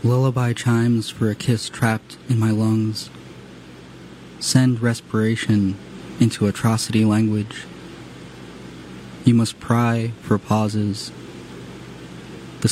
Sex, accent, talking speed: male, American, 95 wpm